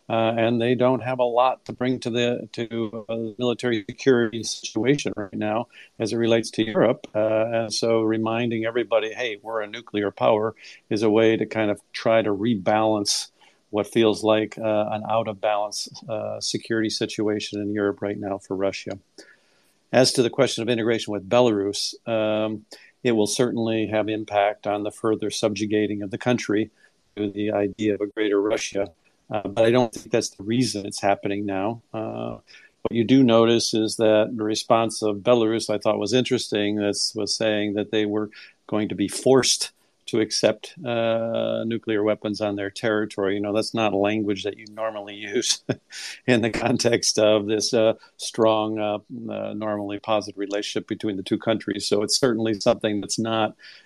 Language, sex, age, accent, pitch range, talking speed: English, male, 50-69, American, 105-115 Hz, 180 wpm